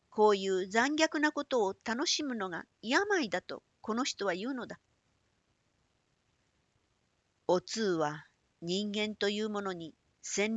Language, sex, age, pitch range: Japanese, female, 50-69, 150-225 Hz